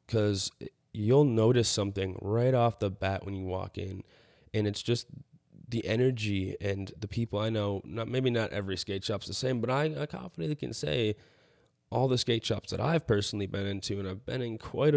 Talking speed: 200 wpm